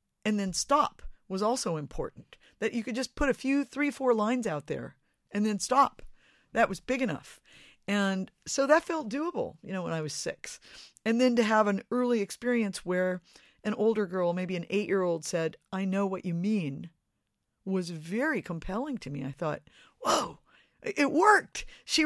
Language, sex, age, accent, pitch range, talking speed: English, female, 50-69, American, 170-230 Hz, 180 wpm